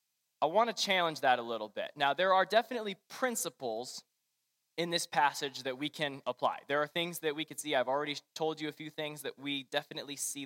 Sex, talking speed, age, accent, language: male, 220 wpm, 20-39, American, English